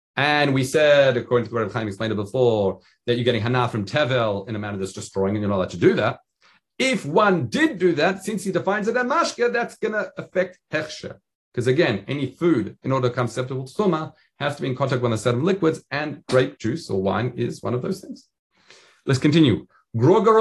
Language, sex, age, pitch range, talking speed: English, male, 40-59, 115-160 Hz, 220 wpm